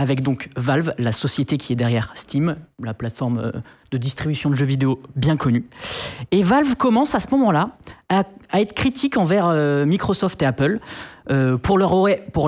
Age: 20-39